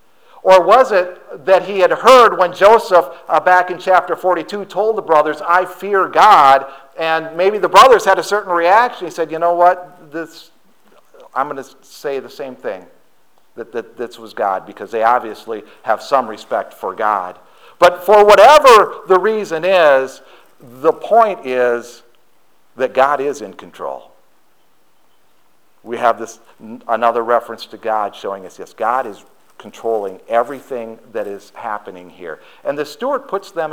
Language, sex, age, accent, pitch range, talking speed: English, male, 50-69, American, 140-200 Hz, 160 wpm